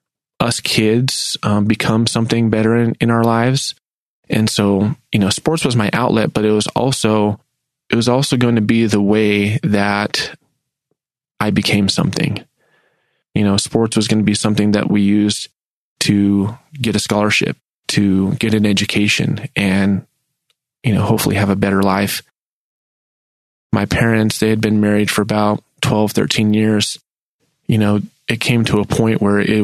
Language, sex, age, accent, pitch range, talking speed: English, male, 20-39, American, 105-115 Hz, 165 wpm